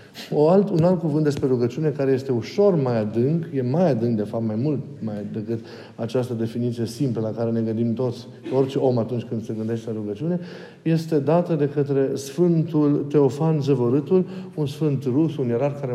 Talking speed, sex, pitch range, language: 190 wpm, male, 125-165 Hz, Romanian